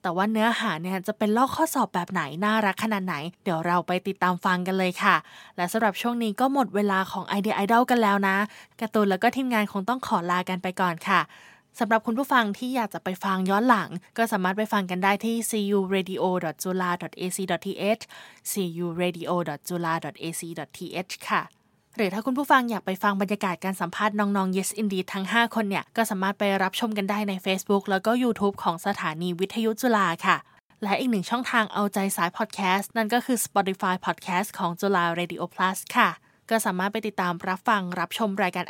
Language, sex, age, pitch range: English, female, 20-39, 185-220 Hz